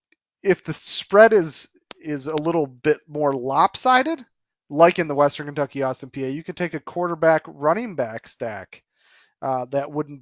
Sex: male